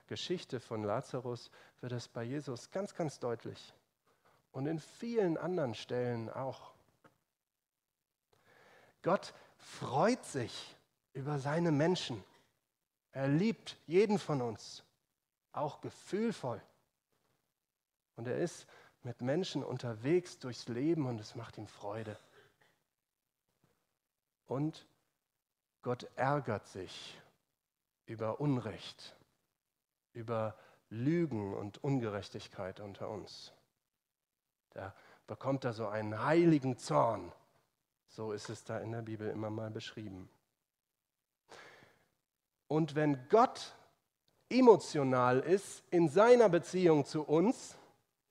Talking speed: 100 wpm